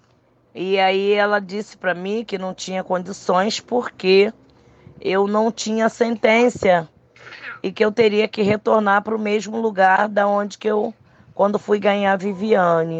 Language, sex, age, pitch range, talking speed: Portuguese, female, 20-39, 175-210 Hz, 155 wpm